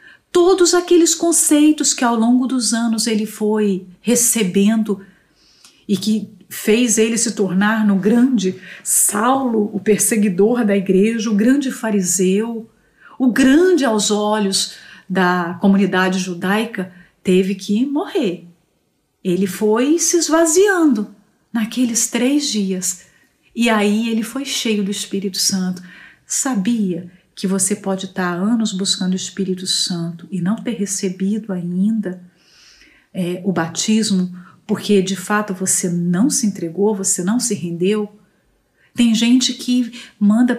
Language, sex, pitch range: Portuguese, female, 195-245 Hz